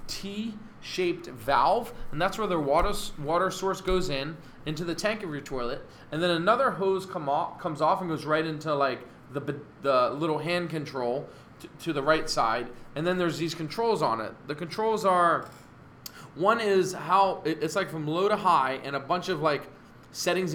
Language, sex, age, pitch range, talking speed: English, male, 20-39, 145-190 Hz, 195 wpm